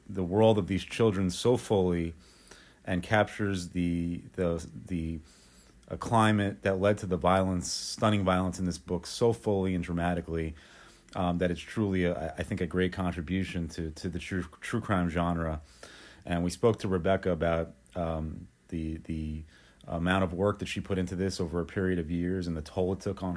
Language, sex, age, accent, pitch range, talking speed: English, male, 30-49, American, 85-95 Hz, 185 wpm